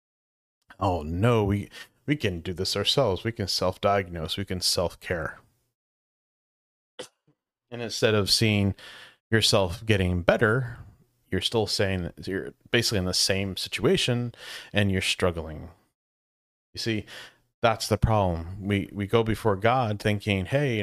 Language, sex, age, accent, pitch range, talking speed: English, male, 30-49, American, 90-110 Hz, 135 wpm